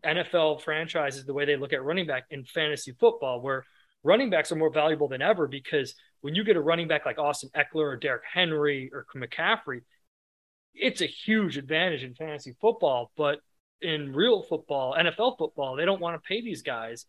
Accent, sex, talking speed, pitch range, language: American, male, 195 wpm, 140-180 Hz, English